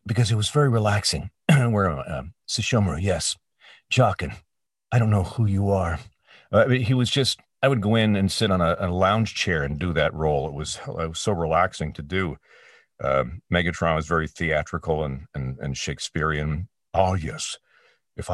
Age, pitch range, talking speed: 50-69, 85-105 Hz, 195 wpm